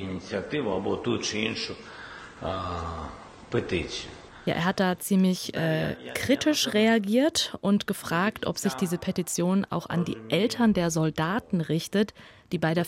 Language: German